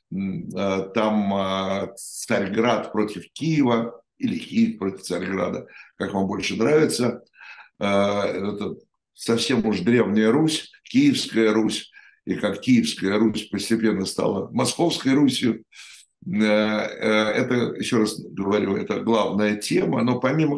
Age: 60-79